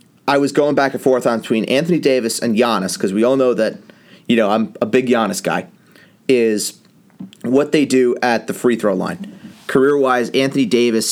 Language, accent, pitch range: English, American, 95-130 Hz